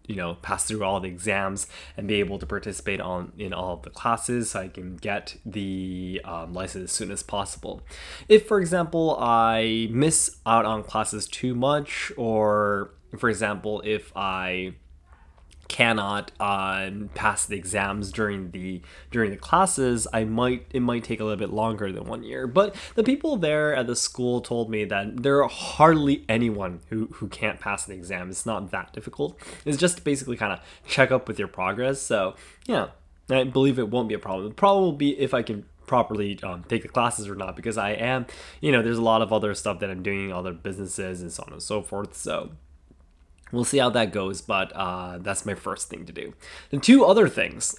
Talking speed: 205 wpm